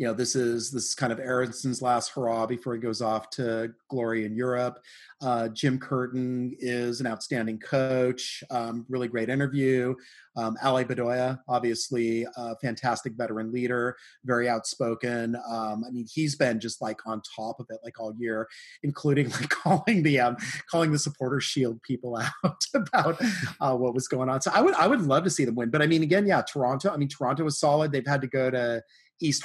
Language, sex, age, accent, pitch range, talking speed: English, male, 30-49, American, 115-140 Hz, 200 wpm